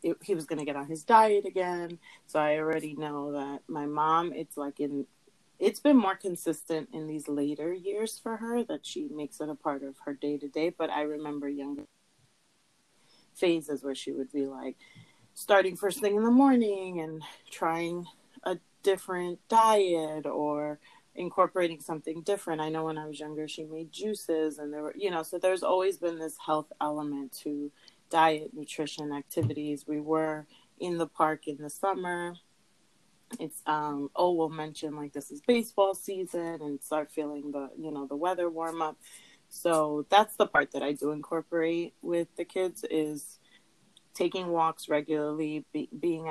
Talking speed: 175 wpm